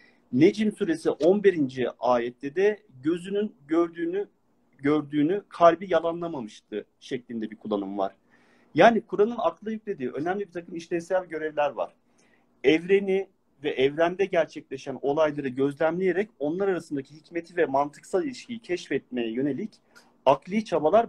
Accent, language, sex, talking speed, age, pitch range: native, Turkish, male, 115 wpm, 40-59, 155-210 Hz